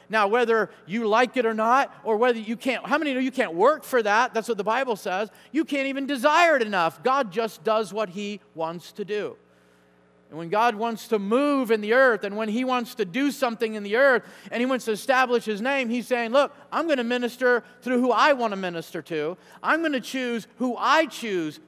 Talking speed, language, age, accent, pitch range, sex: 235 wpm, English, 50-69, American, 180-230 Hz, male